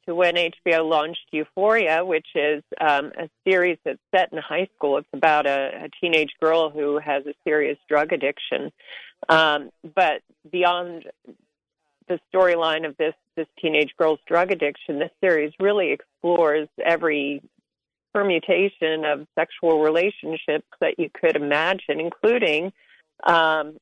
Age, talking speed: 40-59, 135 wpm